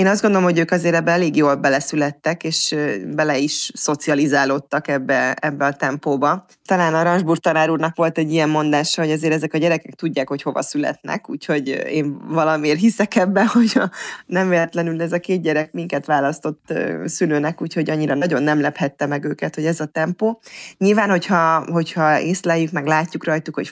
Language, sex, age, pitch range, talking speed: Hungarian, female, 20-39, 150-185 Hz, 170 wpm